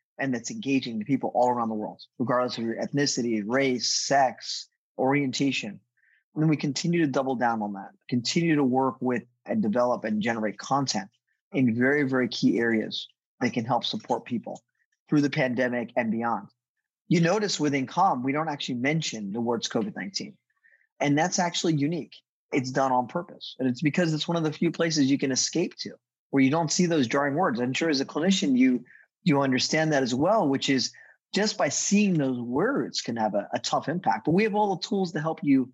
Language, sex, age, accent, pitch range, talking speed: English, male, 30-49, American, 125-160 Hz, 205 wpm